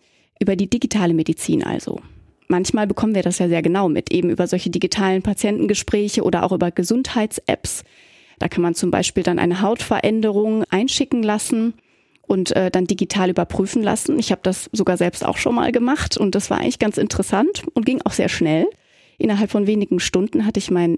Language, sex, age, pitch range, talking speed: German, female, 30-49, 180-220 Hz, 185 wpm